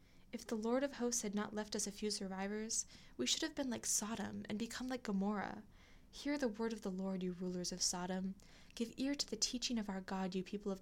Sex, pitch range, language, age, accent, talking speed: female, 190-235 Hz, English, 10-29, American, 240 wpm